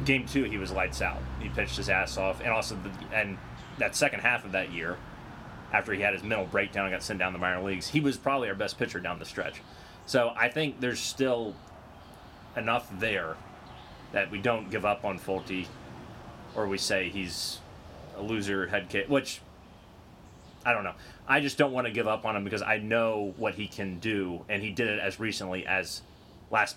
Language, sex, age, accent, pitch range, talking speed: English, male, 30-49, American, 95-125 Hz, 210 wpm